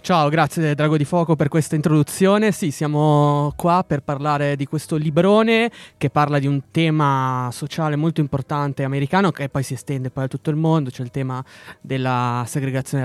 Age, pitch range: 20-39, 130-155 Hz